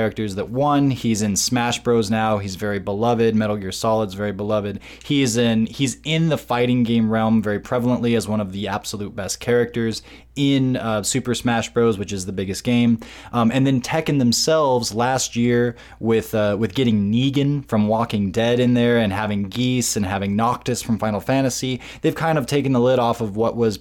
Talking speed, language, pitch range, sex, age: 190 wpm, English, 105-120 Hz, male, 20-39